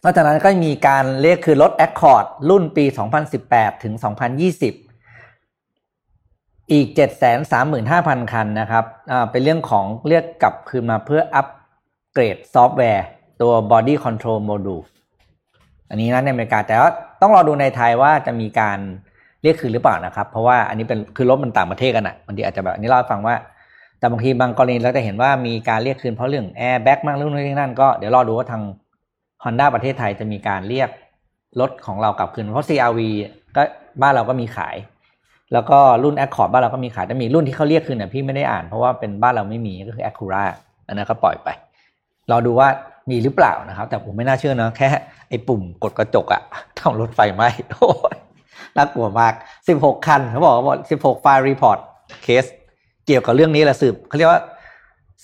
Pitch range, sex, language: 115-140 Hz, male, Thai